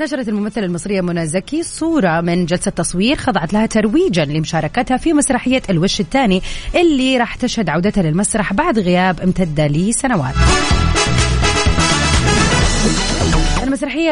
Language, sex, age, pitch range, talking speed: Arabic, female, 30-49, 180-255 Hz, 115 wpm